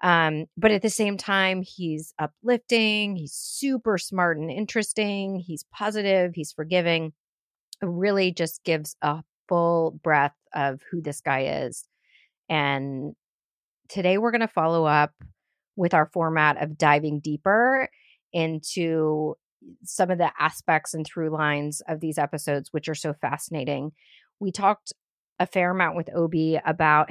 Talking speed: 140 wpm